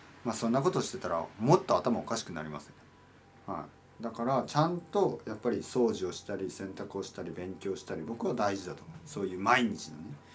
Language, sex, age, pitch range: Japanese, male, 40-59, 115-160 Hz